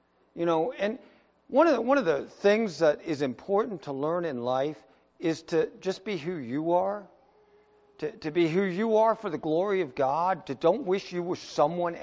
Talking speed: 205 wpm